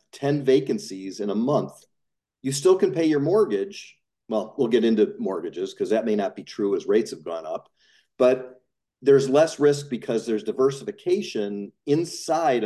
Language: English